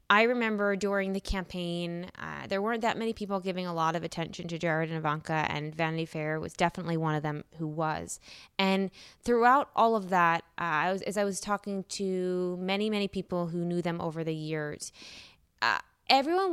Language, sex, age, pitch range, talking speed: English, female, 20-39, 160-205 Hz, 195 wpm